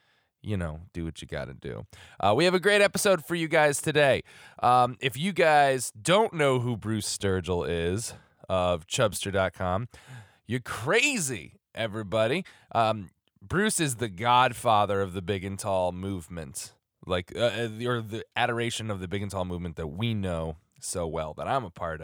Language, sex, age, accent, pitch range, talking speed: English, male, 20-39, American, 95-130 Hz, 175 wpm